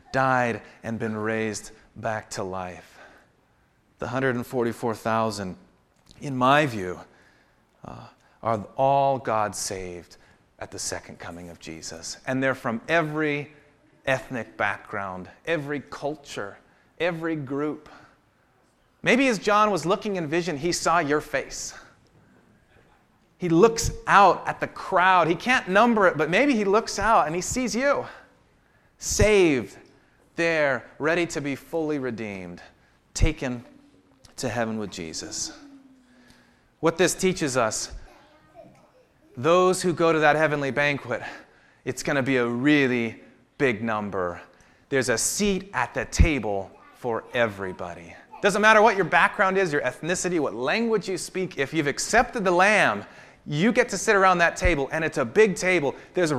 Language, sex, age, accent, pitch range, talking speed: English, male, 40-59, American, 115-185 Hz, 140 wpm